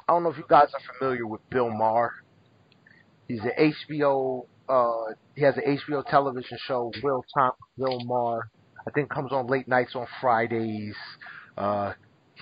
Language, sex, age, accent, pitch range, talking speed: English, male, 30-49, American, 125-165 Hz, 165 wpm